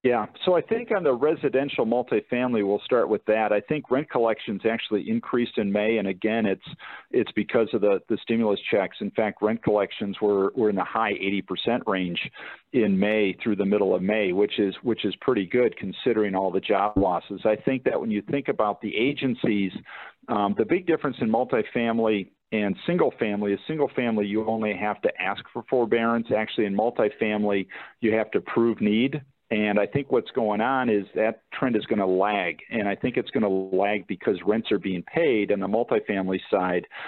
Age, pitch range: 50-69, 100-120 Hz